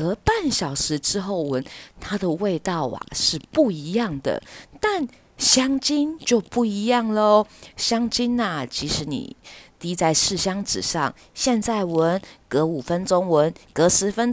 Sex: female